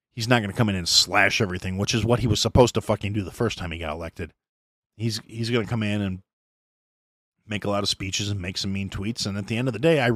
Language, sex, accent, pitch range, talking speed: English, male, American, 110-150 Hz, 290 wpm